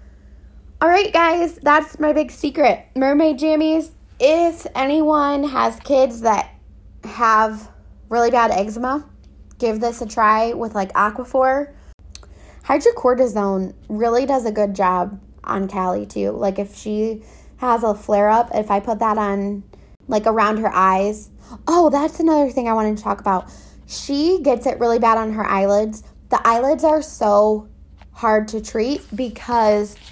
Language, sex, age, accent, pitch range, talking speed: English, female, 20-39, American, 205-260 Hz, 150 wpm